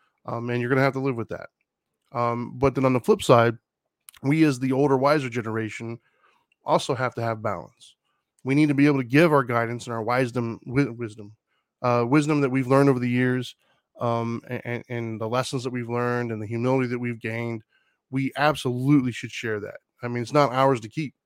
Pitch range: 120-140 Hz